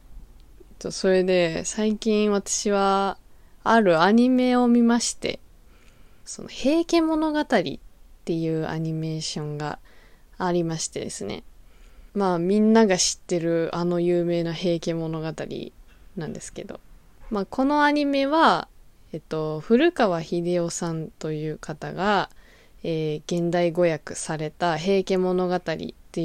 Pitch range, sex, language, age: 160-230 Hz, female, Japanese, 20-39